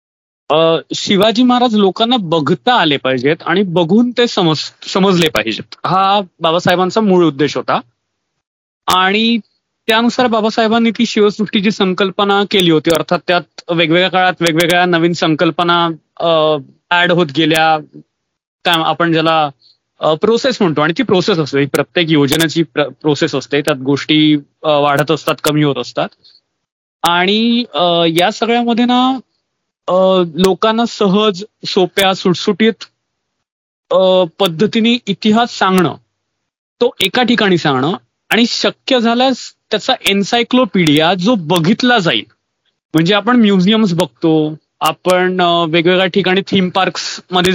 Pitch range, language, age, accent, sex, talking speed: 160-220 Hz, Marathi, 30-49, native, male, 115 wpm